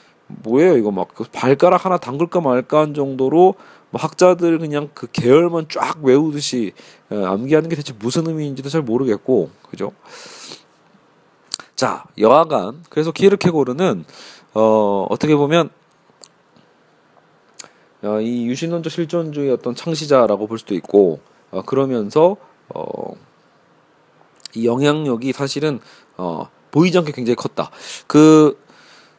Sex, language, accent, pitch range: male, Korean, native, 130-175 Hz